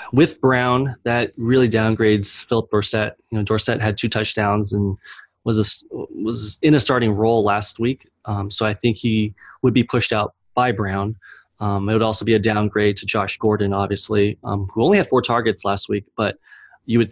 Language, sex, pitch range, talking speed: English, male, 105-120 Hz, 195 wpm